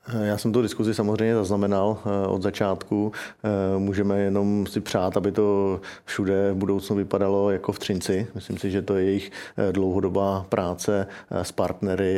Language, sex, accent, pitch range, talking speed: Czech, male, native, 95-100 Hz, 155 wpm